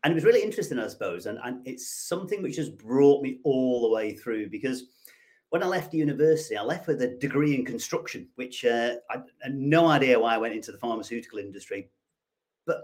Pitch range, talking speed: 125-175 Hz, 215 wpm